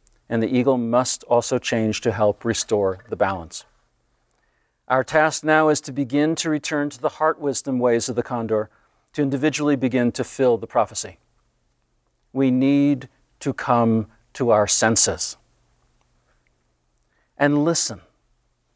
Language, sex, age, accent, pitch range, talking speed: English, male, 50-69, American, 115-140 Hz, 140 wpm